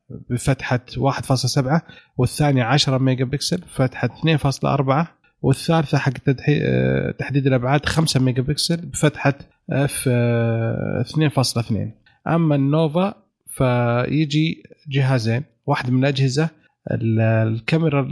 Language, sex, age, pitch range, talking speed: Arabic, male, 30-49, 125-150 Hz, 85 wpm